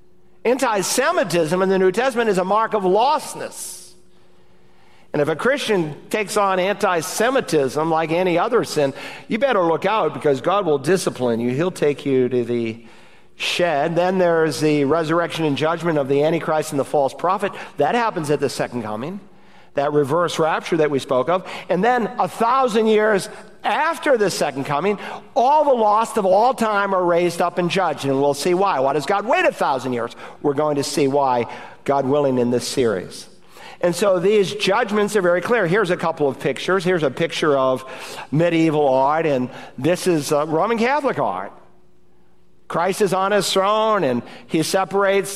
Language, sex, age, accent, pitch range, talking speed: English, male, 50-69, American, 145-190 Hz, 180 wpm